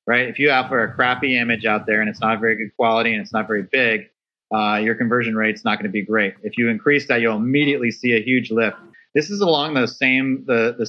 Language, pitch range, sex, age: English, 110-125 Hz, male, 30-49